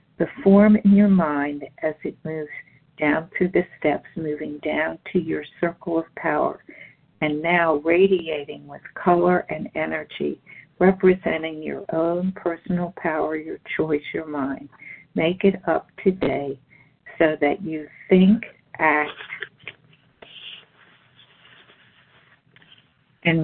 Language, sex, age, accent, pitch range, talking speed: English, female, 50-69, American, 150-175 Hz, 115 wpm